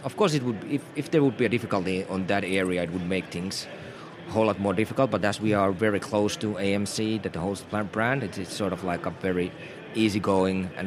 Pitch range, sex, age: 95-110 Hz, male, 30-49